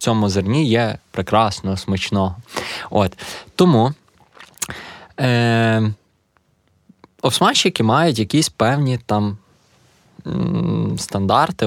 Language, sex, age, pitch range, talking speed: Ukrainian, male, 20-39, 100-130 Hz, 85 wpm